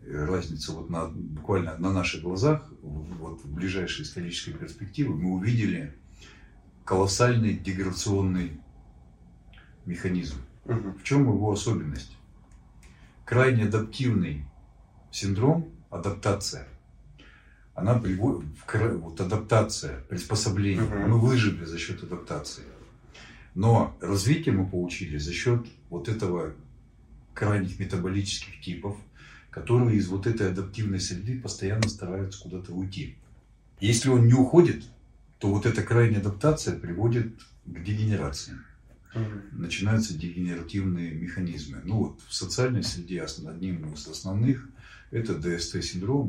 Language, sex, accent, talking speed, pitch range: Russian, male, native, 105 wpm, 85-115 Hz